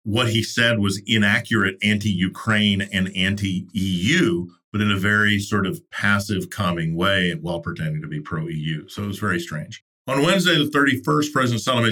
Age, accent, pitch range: 50-69, American, 95-115 Hz